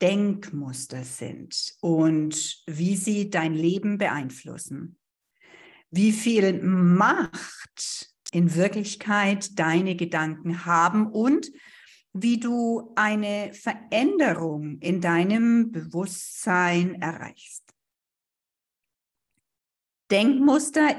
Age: 50-69